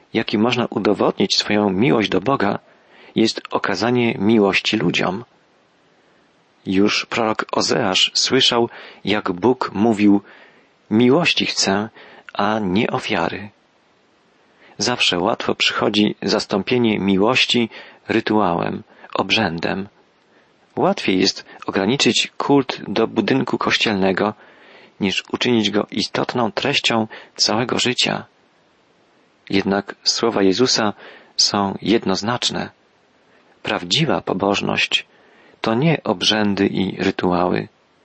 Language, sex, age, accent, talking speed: Polish, male, 40-59, native, 90 wpm